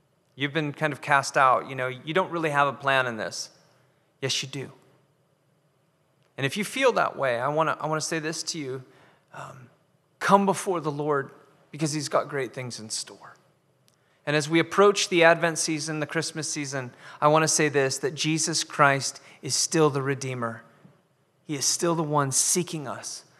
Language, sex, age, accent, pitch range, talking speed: English, male, 20-39, American, 125-155 Hz, 190 wpm